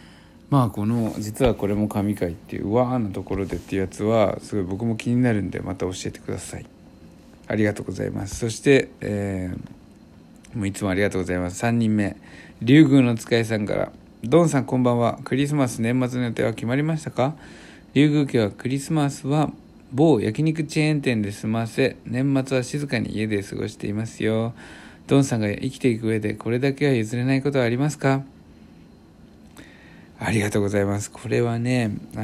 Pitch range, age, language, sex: 105-135 Hz, 60-79, Japanese, male